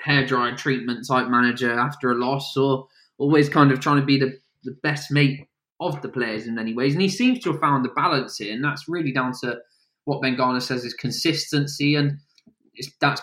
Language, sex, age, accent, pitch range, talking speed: English, male, 20-39, British, 110-140 Hz, 210 wpm